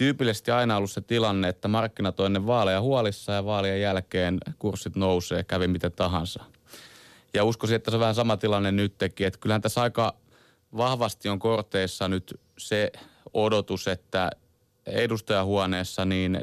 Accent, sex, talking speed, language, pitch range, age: native, male, 145 wpm, Finnish, 100-115 Hz, 30-49